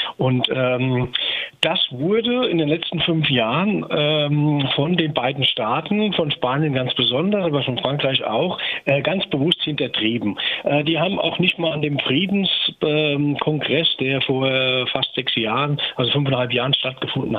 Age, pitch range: 50-69, 130-165 Hz